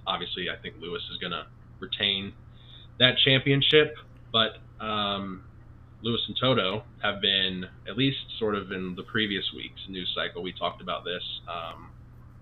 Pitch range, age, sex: 95-120 Hz, 20-39, male